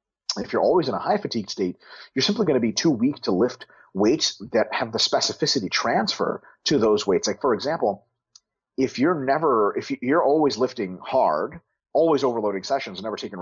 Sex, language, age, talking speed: male, English, 40-59, 190 wpm